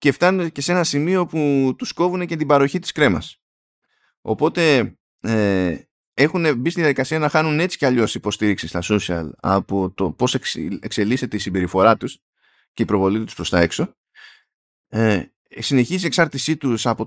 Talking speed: 160 wpm